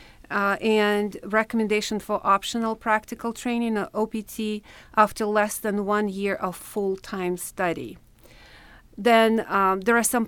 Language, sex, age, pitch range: English, female, 40-59, 190-220 Hz